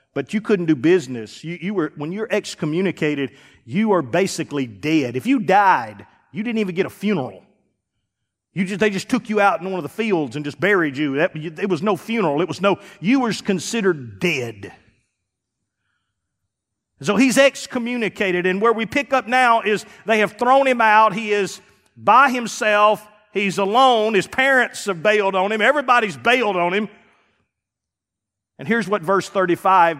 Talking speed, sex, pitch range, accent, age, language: 175 wpm, male, 150-220 Hz, American, 40-59, English